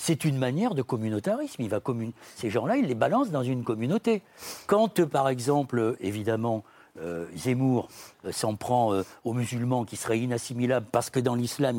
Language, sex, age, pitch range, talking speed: French, male, 60-79, 115-165 Hz, 175 wpm